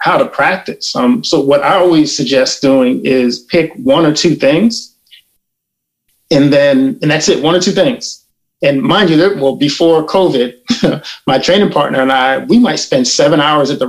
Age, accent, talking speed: 20-39, American, 185 wpm